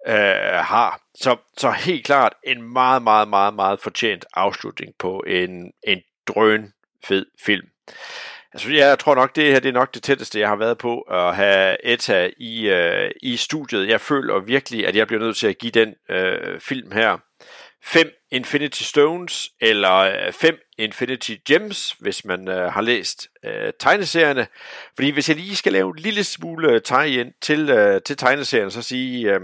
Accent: native